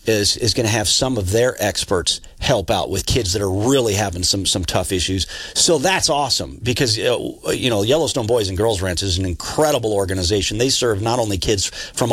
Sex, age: male, 40-59